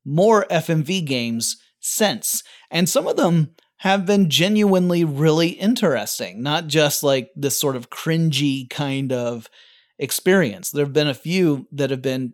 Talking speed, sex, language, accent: 150 wpm, male, English, American